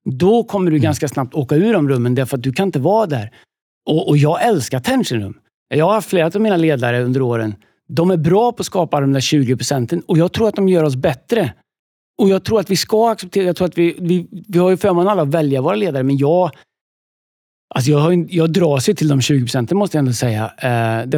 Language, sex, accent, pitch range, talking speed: Swedish, male, native, 130-175 Hz, 245 wpm